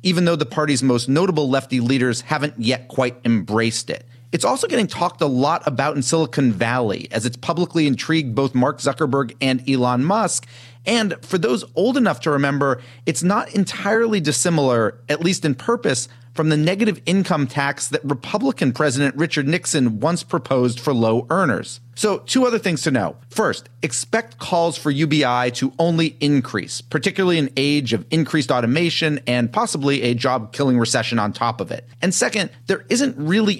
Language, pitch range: English, 120-170 Hz